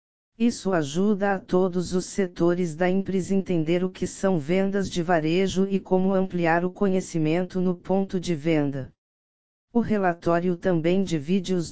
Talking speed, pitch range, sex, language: 155 wpm, 170-190 Hz, female, Portuguese